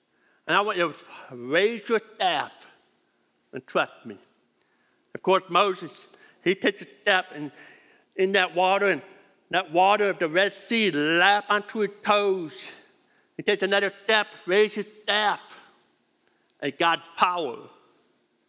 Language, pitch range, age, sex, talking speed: English, 185-250 Hz, 60-79, male, 140 wpm